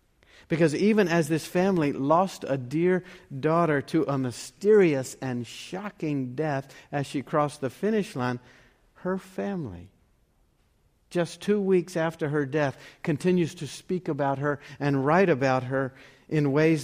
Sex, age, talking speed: male, 50-69, 145 wpm